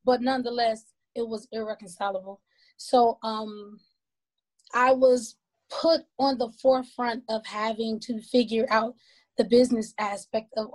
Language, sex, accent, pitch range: English, female, American, 210-250 Hz